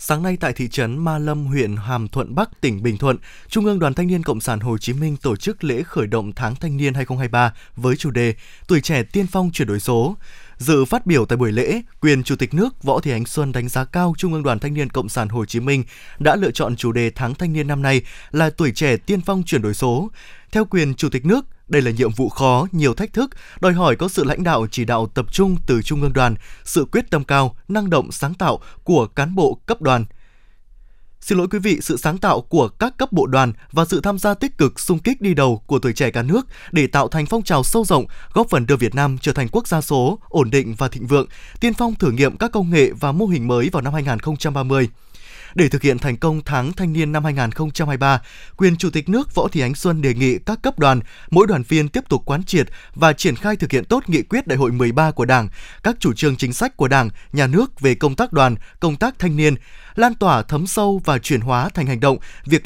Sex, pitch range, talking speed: male, 125-180 Hz, 250 wpm